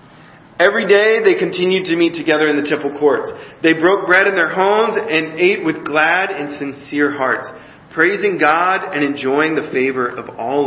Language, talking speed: English, 180 wpm